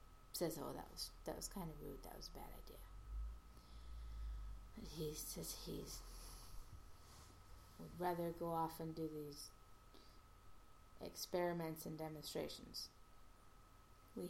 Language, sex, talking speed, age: English, female, 120 wpm, 30-49